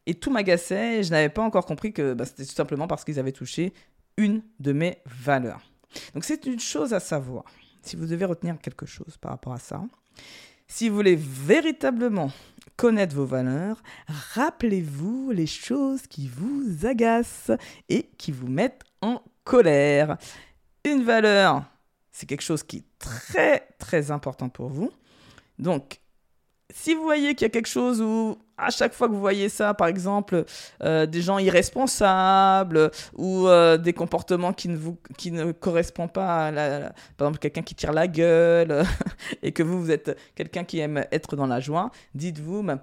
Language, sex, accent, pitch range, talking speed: French, female, French, 140-195 Hz, 180 wpm